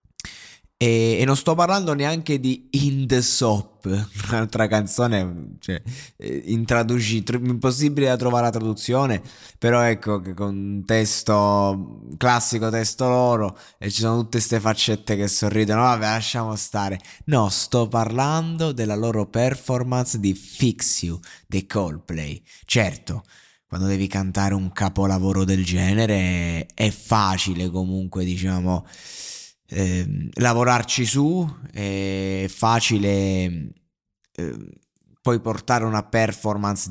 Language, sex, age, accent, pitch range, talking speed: Italian, male, 20-39, native, 95-125 Hz, 120 wpm